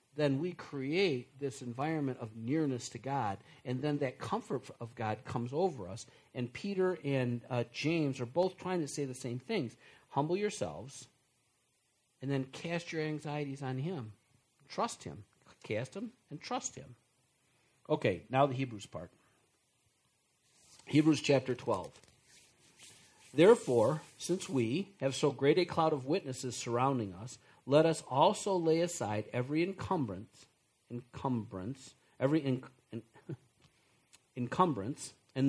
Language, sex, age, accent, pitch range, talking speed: English, male, 50-69, American, 125-155 Hz, 135 wpm